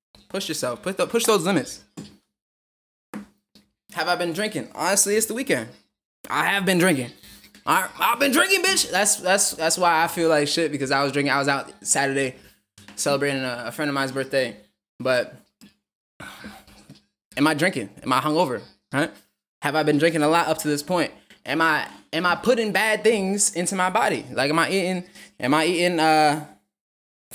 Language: English